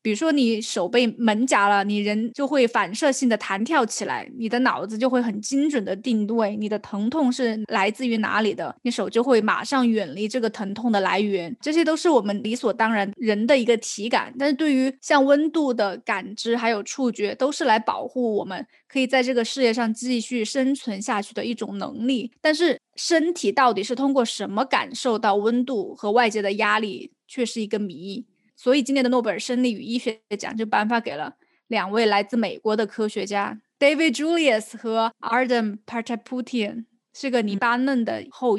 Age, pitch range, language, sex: 20-39, 210-260 Hz, Chinese, female